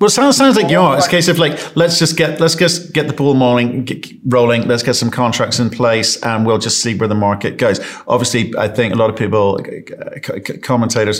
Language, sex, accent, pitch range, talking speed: English, male, British, 105-135 Hz, 235 wpm